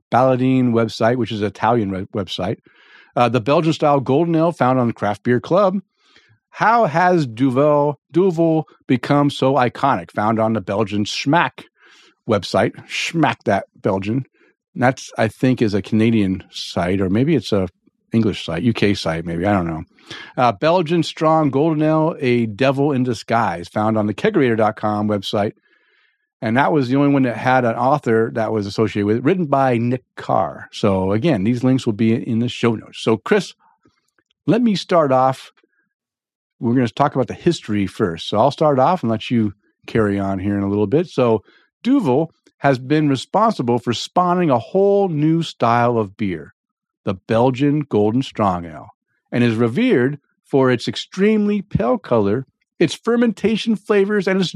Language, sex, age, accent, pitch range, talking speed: English, male, 50-69, American, 110-155 Hz, 170 wpm